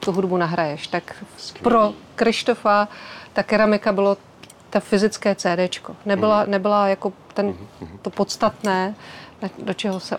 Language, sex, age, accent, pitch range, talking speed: Czech, female, 30-49, native, 190-215 Hz, 125 wpm